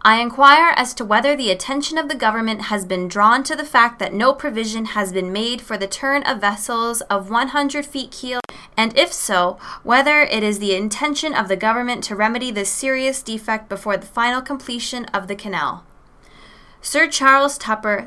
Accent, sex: American, female